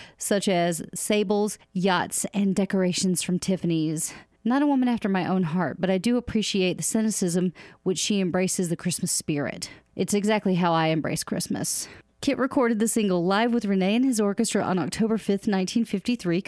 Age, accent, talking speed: 30-49, American, 170 wpm